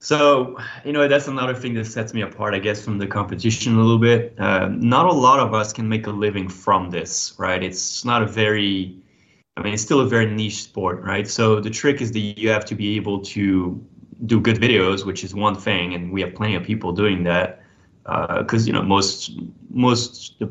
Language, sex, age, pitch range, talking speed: English, male, 20-39, 95-110 Hz, 225 wpm